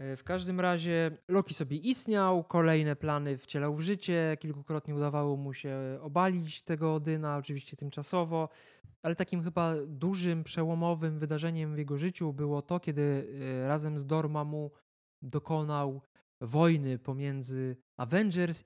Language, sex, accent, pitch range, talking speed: Polish, male, native, 140-170 Hz, 130 wpm